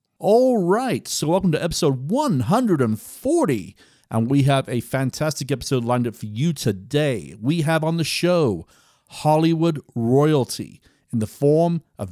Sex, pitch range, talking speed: male, 110-155 Hz, 140 wpm